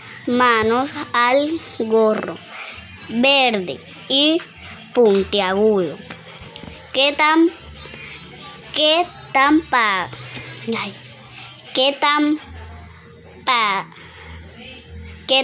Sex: male